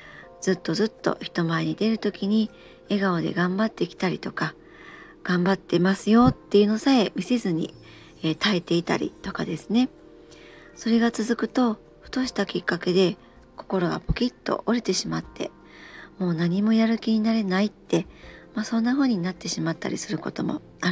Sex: male